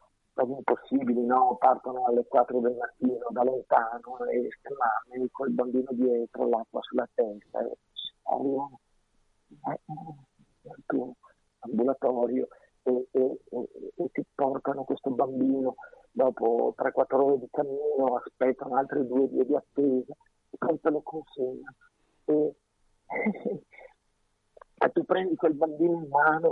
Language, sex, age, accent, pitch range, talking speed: Italian, male, 50-69, native, 130-175 Hz, 120 wpm